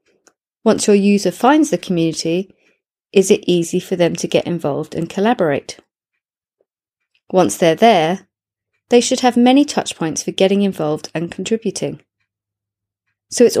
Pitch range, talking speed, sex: 165-220 Hz, 140 wpm, female